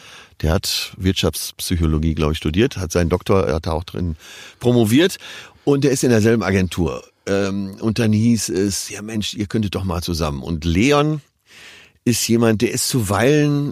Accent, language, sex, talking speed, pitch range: German, German, male, 170 wpm, 85-105 Hz